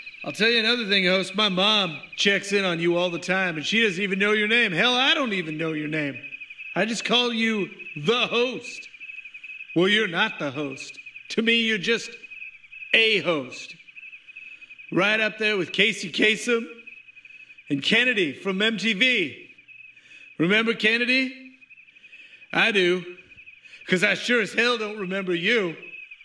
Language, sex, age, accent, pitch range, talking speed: English, male, 50-69, American, 190-255 Hz, 155 wpm